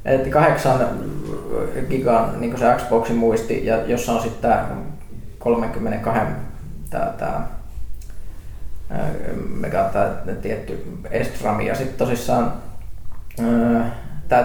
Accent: native